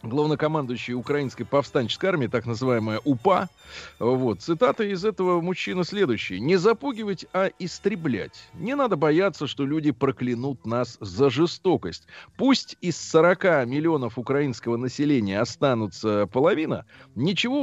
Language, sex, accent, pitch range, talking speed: Russian, male, native, 120-155 Hz, 120 wpm